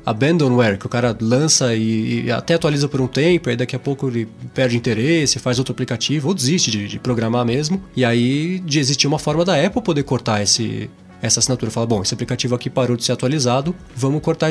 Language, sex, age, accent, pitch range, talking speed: Portuguese, male, 20-39, Brazilian, 125-170 Hz, 215 wpm